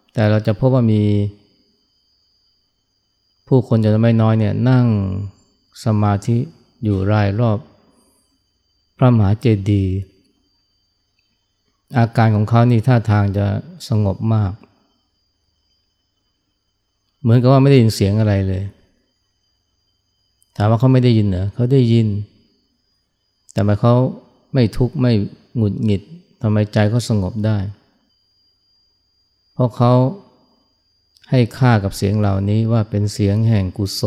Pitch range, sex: 100-115 Hz, male